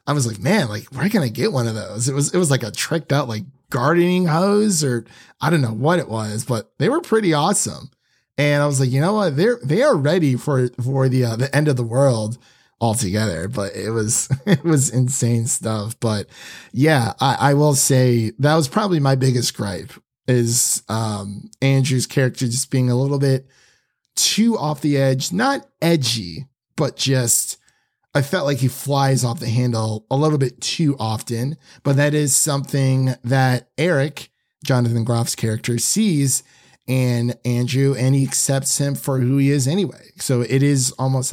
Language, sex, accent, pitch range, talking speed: English, male, American, 120-145 Hz, 190 wpm